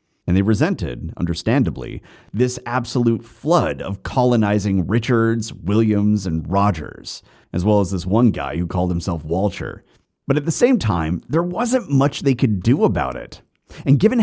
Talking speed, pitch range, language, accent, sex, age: 160 wpm, 95-150 Hz, English, American, male, 30-49